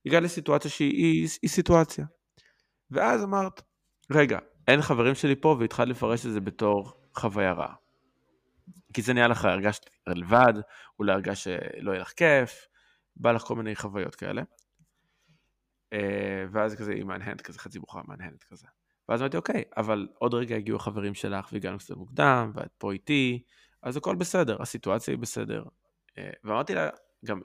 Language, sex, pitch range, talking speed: Hebrew, male, 105-140 Hz, 155 wpm